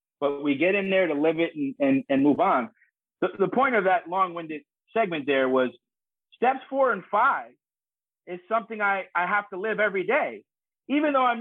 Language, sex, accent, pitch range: English, male, American, 160-215 Hz